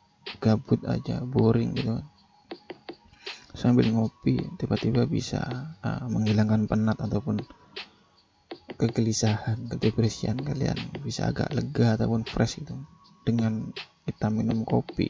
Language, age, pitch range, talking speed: Indonesian, 20-39, 110-125 Hz, 100 wpm